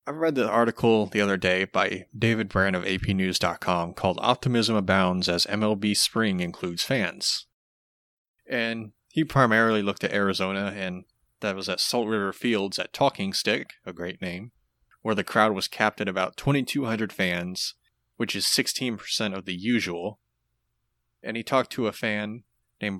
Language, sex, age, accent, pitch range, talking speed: English, male, 30-49, American, 95-115 Hz, 160 wpm